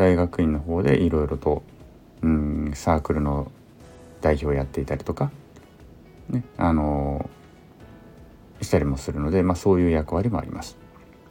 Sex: male